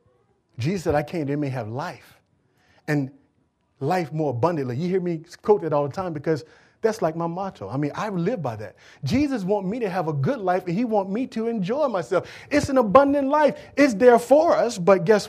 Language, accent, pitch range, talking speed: English, American, 155-225 Hz, 215 wpm